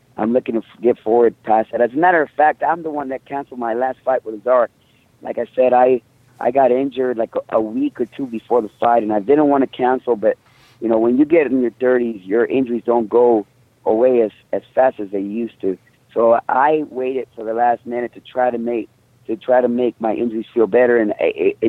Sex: male